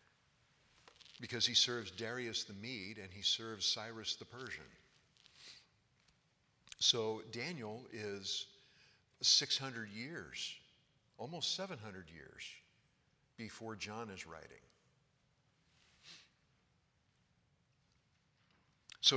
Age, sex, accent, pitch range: 60-79, male, American, 110-130 Hz